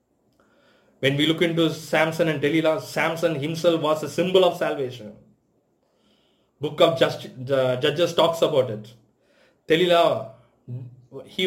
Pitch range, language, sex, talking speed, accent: 135-175 Hz, English, male, 125 wpm, Indian